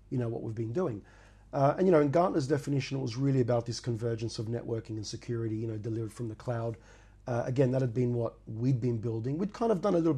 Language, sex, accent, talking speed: English, male, Australian, 260 wpm